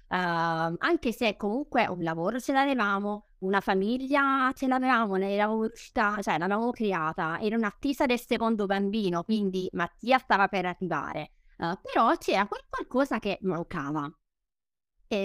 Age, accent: 20-39, native